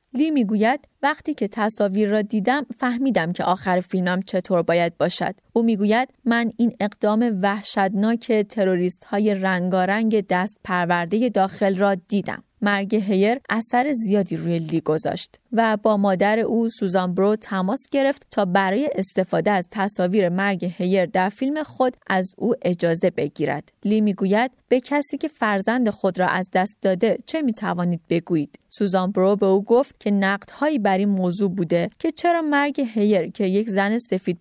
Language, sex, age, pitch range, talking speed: Persian, female, 30-49, 185-235 Hz, 160 wpm